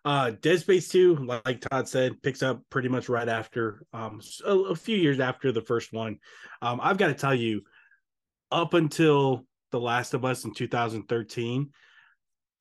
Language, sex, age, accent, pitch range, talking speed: English, male, 20-39, American, 110-135 Hz, 170 wpm